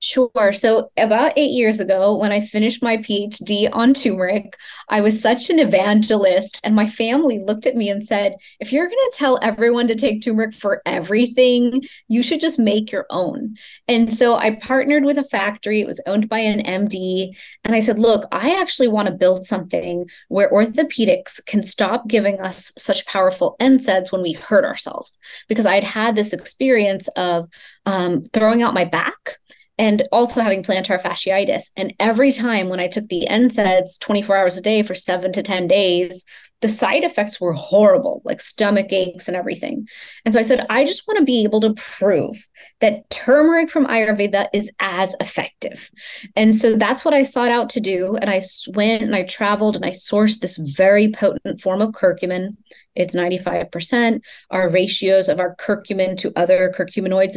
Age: 20-39